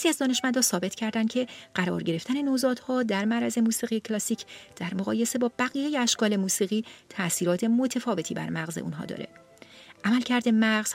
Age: 40-59